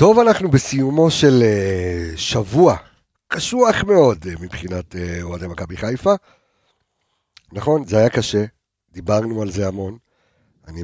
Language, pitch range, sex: Hebrew, 100-150 Hz, male